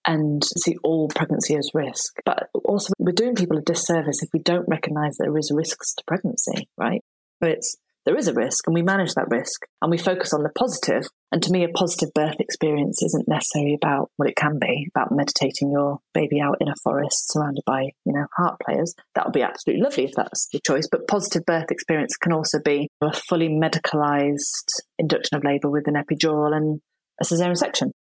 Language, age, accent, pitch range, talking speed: English, 30-49, British, 145-175 Hz, 210 wpm